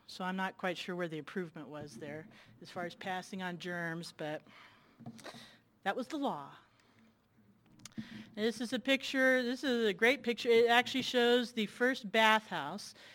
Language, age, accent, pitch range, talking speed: English, 40-59, American, 170-220 Hz, 165 wpm